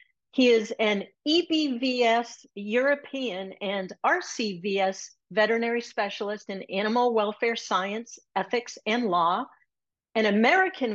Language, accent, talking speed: English, American, 100 wpm